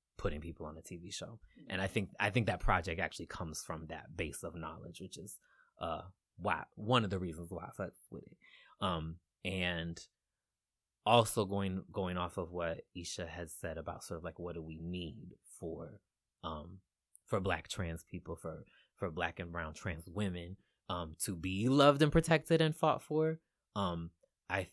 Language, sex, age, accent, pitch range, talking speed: English, male, 20-39, American, 85-120 Hz, 180 wpm